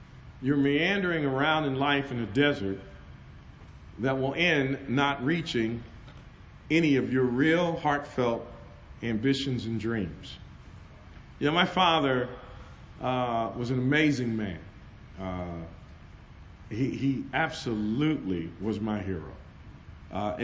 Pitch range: 110-145 Hz